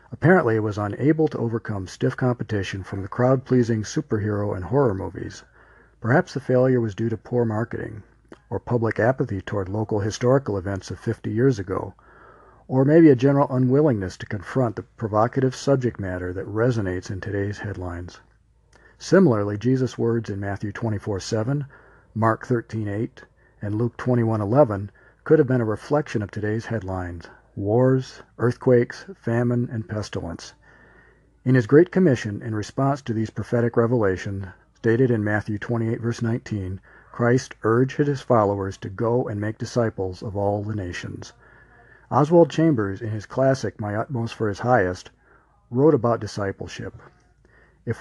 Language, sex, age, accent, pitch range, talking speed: English, male, 50-69, American, 105-125 Hz, 145 wpm